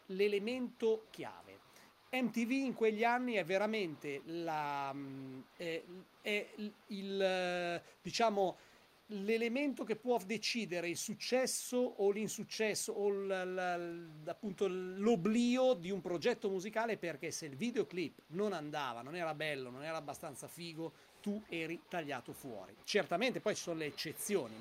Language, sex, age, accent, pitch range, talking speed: Italian, male, 40-59, native, 170-215 Hz, 120 wpm